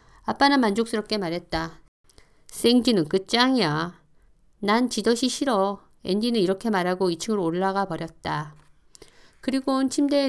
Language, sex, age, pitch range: Korean, female, 50-69, 175-220 Hz